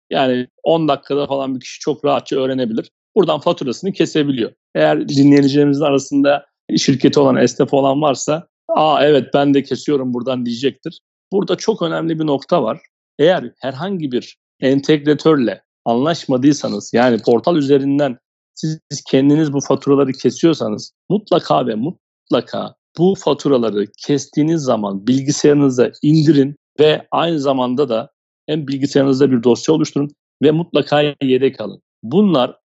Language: Turkish